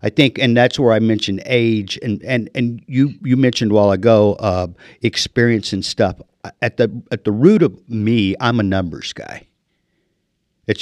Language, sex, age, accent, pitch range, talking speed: English, male, 50-69, American, 95-115 Hz, 185 wpm